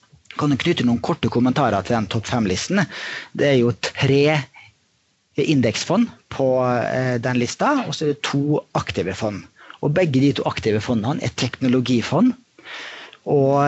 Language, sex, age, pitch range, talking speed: English, male, 30-49, 120-155 Hz, 155 wpm